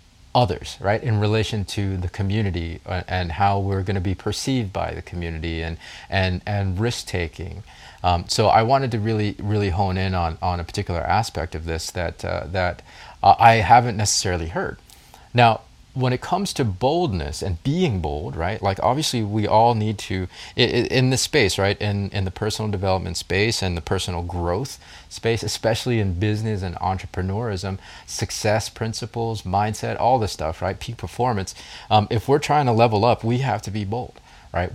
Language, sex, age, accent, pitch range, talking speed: English, male, 30-49, American, 90-110 Hz, 180 wpm